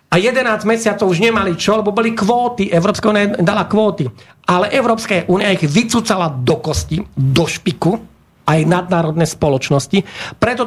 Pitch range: 160-205 Hz